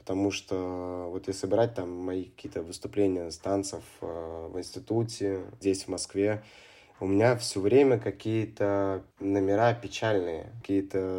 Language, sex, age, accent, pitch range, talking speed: Russian, male, 20-39, native, 95-110 Hz, 130 wpm